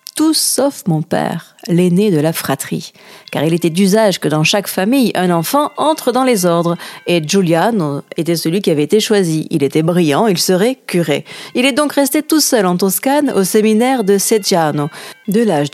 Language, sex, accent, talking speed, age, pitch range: French, female, French, 190 wpm, 40-59, 170-235 Hz